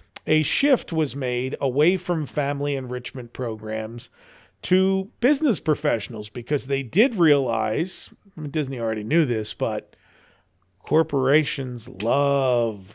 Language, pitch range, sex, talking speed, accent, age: English, 125-160 Hz, male, 115 wpm, American, 40-59